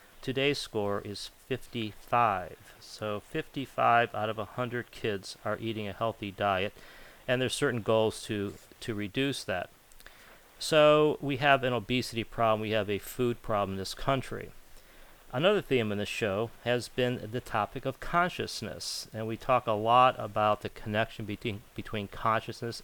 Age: 40-59